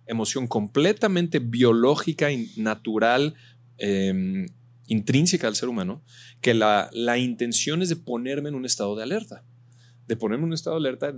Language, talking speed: Spanish, 150 wpm